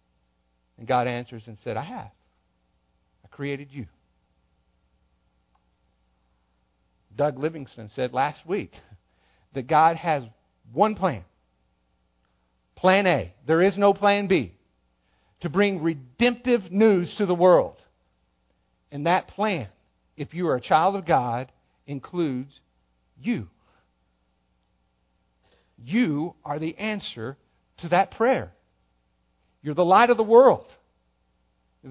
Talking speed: 115 wpm